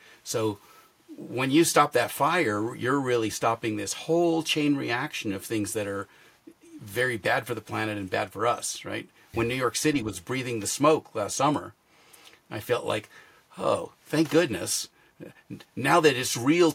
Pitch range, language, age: 110-155 Hz, English, 50-69